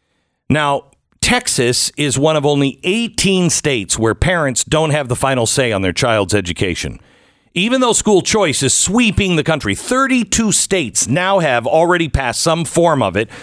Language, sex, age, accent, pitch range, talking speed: English, male, 50-69, American, 125-180 Hz, 165 wpm